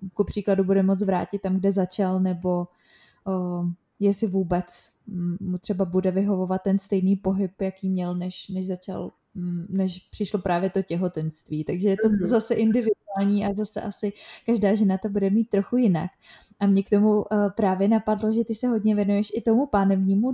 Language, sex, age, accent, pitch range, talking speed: Czech, female, 20-39, native, 190-210 Hz, 175 wpm